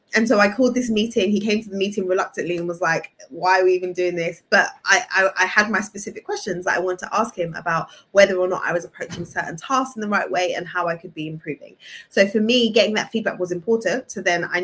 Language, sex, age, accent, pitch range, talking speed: English, female, 20-39, British, 180-235 Hz, 265 wpm